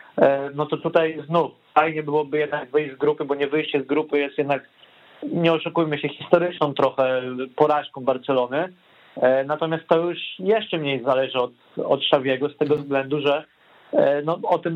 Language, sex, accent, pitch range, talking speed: Polish, male, native, 140-165 Hz, 165 wpm